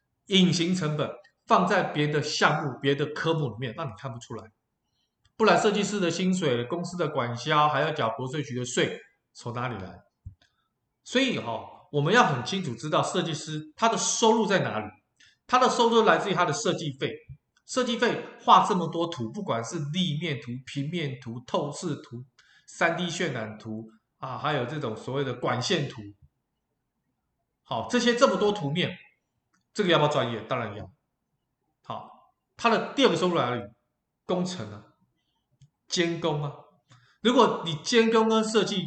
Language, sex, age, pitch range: Chinese, male, 20-39, 130-190 Hz